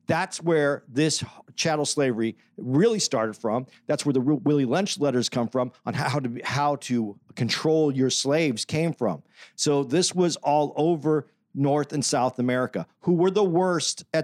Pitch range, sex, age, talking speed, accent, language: 145-205 Hz, male, 50-69, 165 wpm, American, English